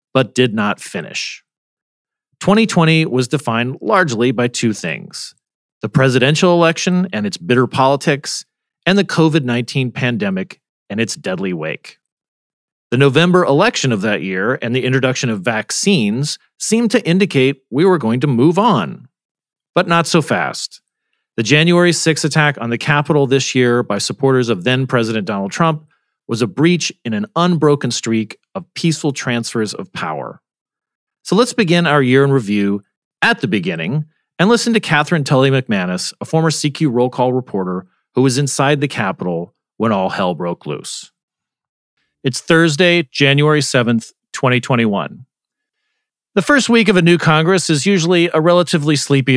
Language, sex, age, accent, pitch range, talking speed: English, male, 40-59, American, 125-175 Hz, 155 wpm